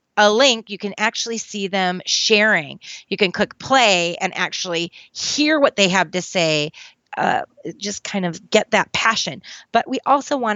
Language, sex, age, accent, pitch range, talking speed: English, female, 30-49, American, 185-245 Hz, 175 wpm